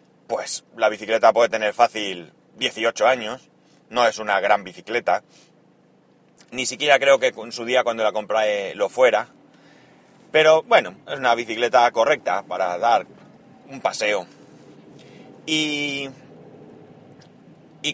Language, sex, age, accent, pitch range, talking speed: Spanish, male, 30-49, Spanish, 125-170 Hz, 125 wpm